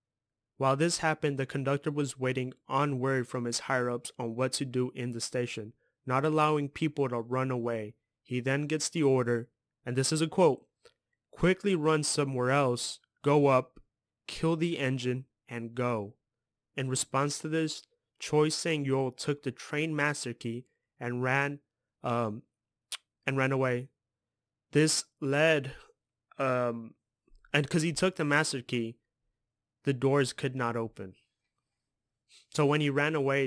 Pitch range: 125-145 Hz